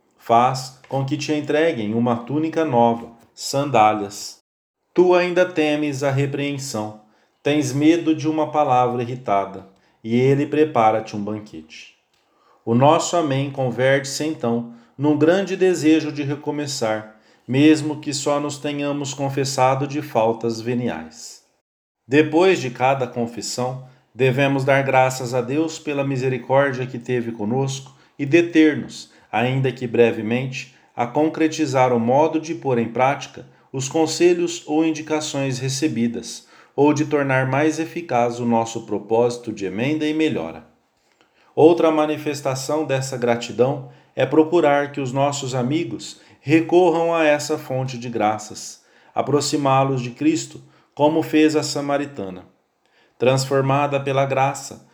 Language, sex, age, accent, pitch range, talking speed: English, male, 40-59, Brazilian, 120-150 Hz, 125 wpm